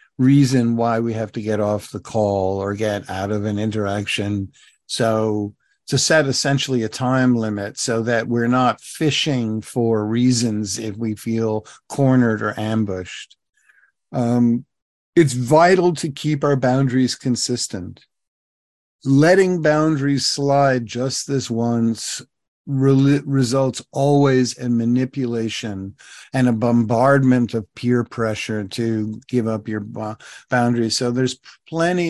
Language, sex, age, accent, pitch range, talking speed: English, male, 50-69, American, 115-130 Hz, 125 wpm